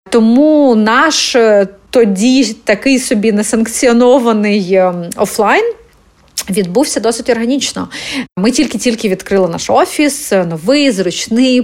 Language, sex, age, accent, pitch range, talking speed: Ukrainian, female, 30-49, native, 200-255 Hz, 90 wpm